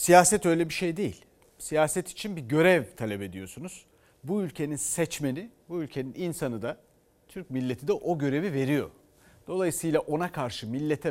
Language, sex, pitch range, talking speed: Turkish, male, 130-180 Hz, 150 wpm